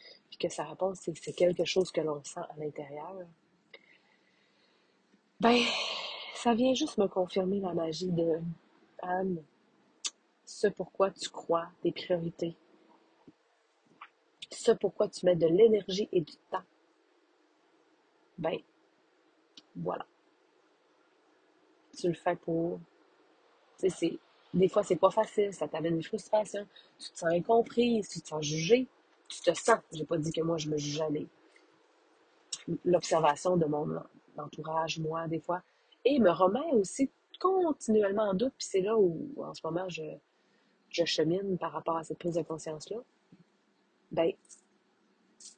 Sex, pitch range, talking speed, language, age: female, 165-220 Hz, 140 wpm, French, 30-49